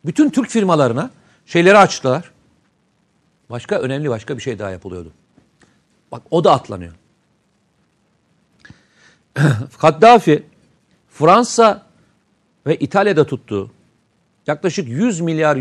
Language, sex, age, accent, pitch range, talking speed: Turkish, male, 50-69, native, 140-200 Hz, 90 wpm